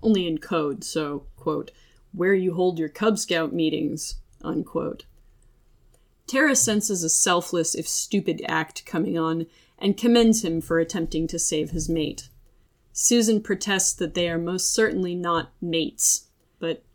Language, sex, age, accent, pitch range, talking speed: English, female, 30-49, American, 160-200 Hz, 145 wpm